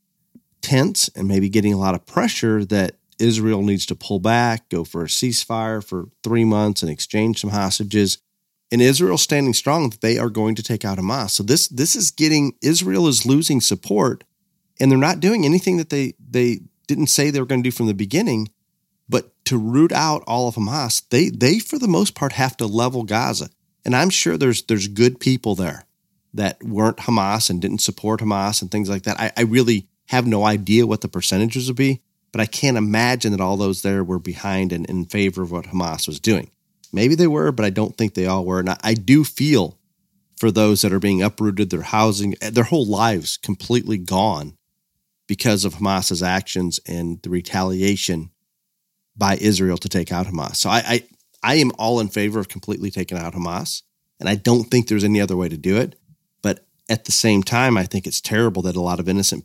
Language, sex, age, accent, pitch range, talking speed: English, male, 40-59, American, 95-125 Hz, 210 wpm